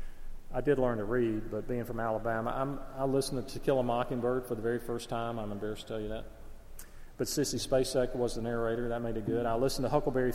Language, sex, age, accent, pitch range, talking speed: English, male, 40-59, American, 115-140 Hz, 245 wpm